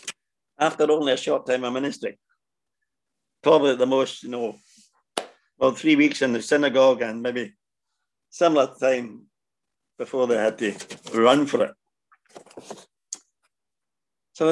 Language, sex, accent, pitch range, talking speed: English, male, British, 135-170 Hz, 125 wpm